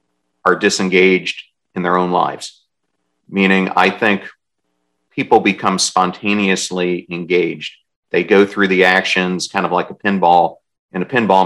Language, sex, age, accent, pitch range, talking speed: English, male, 40-59, American, 85-95 Hz, 135 wpm